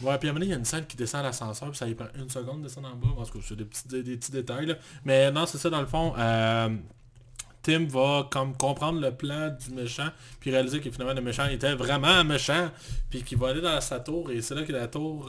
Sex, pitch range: male, 120-140 Hz